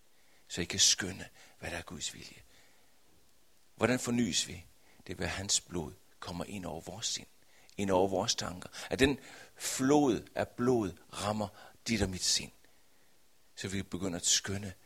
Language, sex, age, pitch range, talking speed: Danish, male, 60-79, 90-120 Hz, 165 wpm